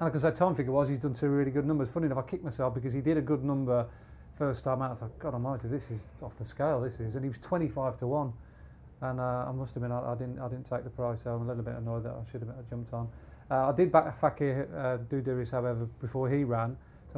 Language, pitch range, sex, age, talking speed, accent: English, 120-140 Hz, male, 40-59, 295 wpm, British